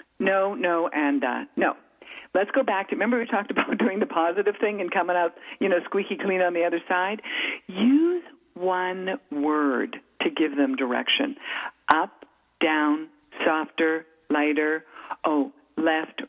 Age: 50-69